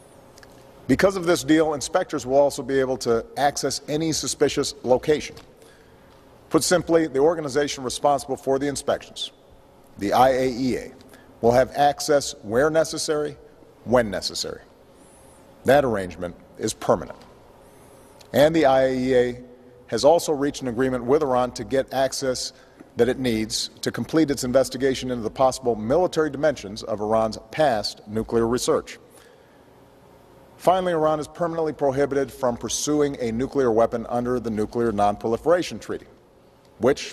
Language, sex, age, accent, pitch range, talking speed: English, male, 50-69, American, 115-140 Hz, 130 wpm